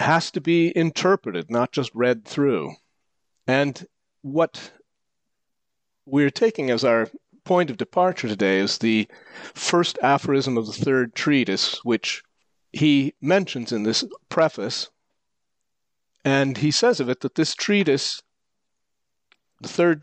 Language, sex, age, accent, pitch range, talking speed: English, male, 40-59, American, 115-155 Hz, 125 wpm